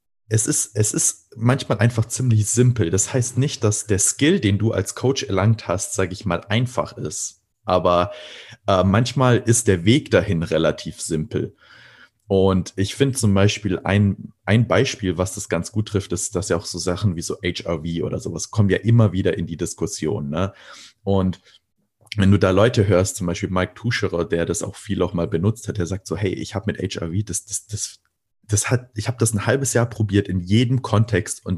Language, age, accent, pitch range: German, 30-49, German, 90-115 Hz